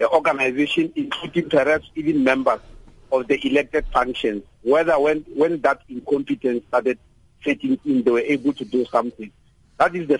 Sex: male